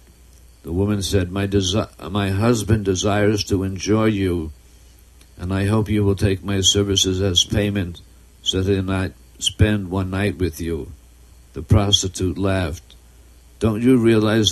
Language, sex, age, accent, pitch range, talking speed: English, male, 60-79, American, 85-105 Hz, 140 wpm